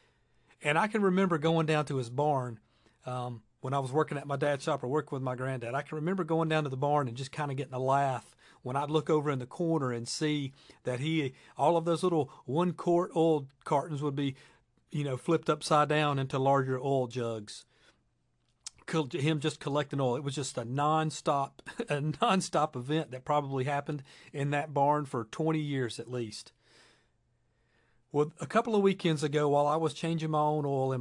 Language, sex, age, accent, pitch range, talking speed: English, male, 40-59, American, 125-155 Hz, 200 wpm